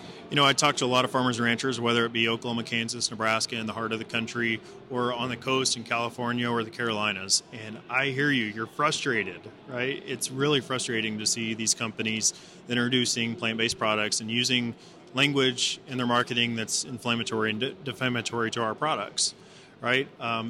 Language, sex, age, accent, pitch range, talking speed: English, male, 30-49, American, 115-130 Hz, 185 wpm